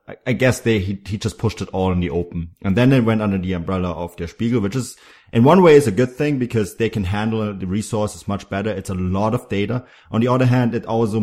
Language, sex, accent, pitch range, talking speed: English, male, German, 90-115 Hz, 265 wpm